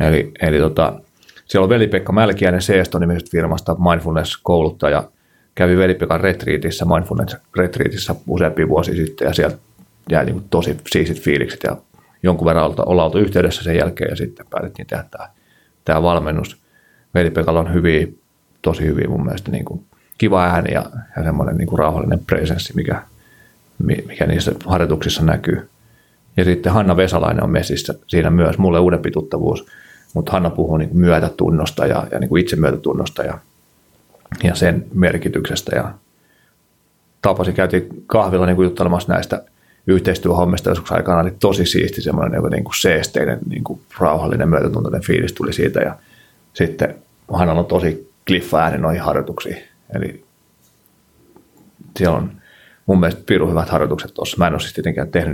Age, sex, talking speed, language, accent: 30-49, male, 135 wpm, Finnish, native